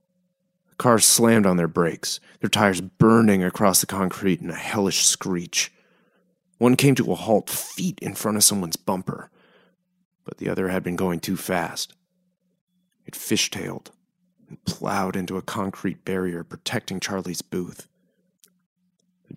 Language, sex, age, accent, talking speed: English, male, 30-49, American, 145 wpm